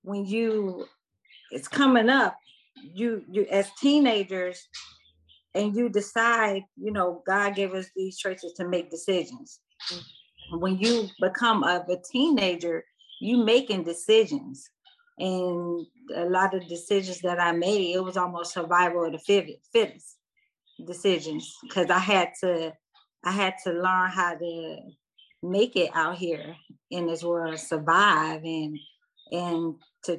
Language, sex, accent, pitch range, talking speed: English, female, American, 175-225 Hz, 135 wpm